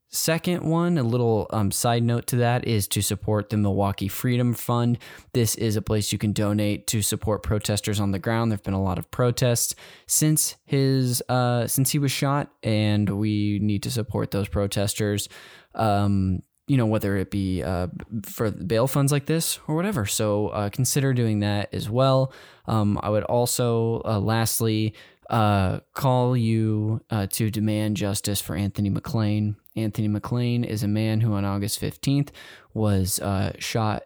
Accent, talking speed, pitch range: American, 175 wpm, 105-125 Hz